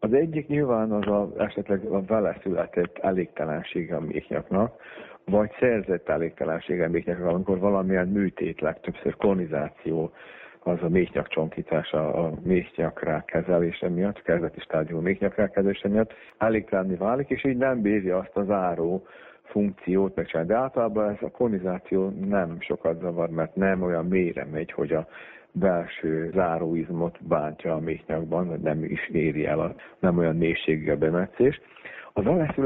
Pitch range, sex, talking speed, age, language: 90-105 Hz, male, 140 wpm, 50-69, Hungarian